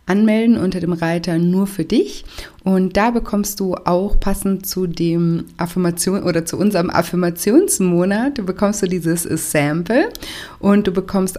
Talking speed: 150 wpm